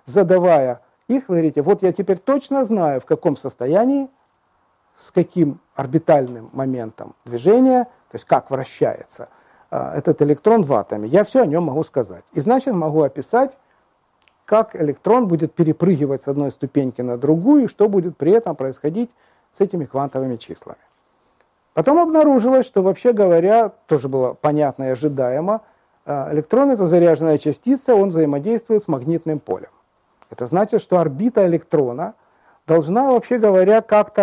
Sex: male